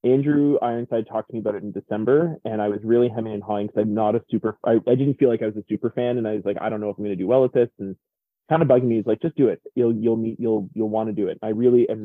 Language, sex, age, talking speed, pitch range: English, male, 20-39, 340 wpm, 105-120 Hz